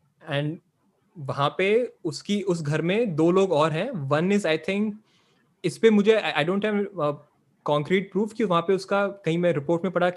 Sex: male